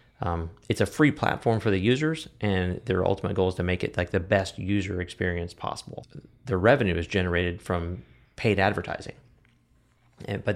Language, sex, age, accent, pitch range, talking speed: English, male, 30-49, American, 90-100 Hz, 175 wpm